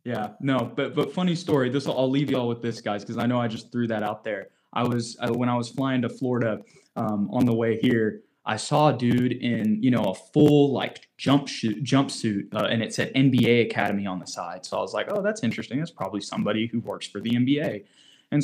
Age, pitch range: 20-39, 115-150 Hz